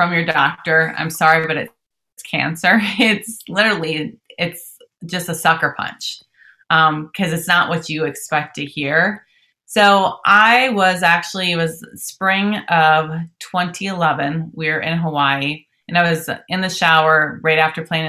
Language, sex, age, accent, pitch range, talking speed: English, female, 30-49, American, 155-185 Hz, 155 wpm